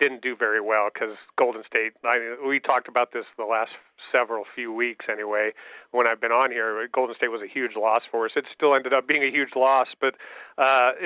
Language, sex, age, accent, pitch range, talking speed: English, male, 40-59, American, 115-140 Hz, 215 wpm